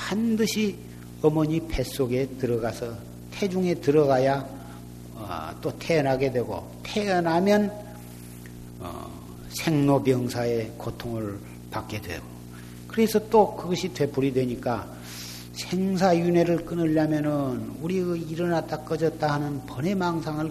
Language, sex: Korean, male